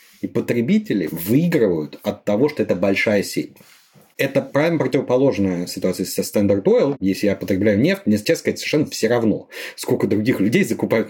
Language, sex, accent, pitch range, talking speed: Russian, male, native, 100-125 Hz, 160 wpm